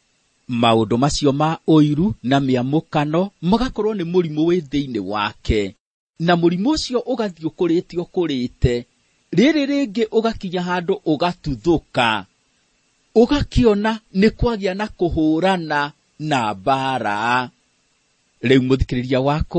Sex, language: male, English